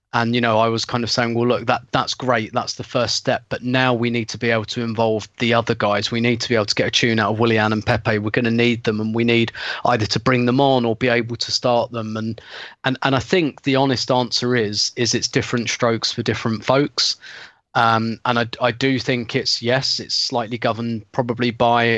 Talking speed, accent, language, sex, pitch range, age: 250 wpm, British, English, male, 115-130 Hz, 20-39